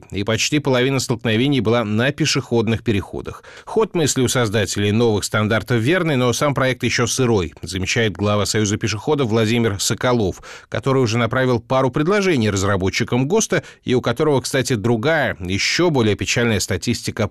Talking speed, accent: 145 wpm, native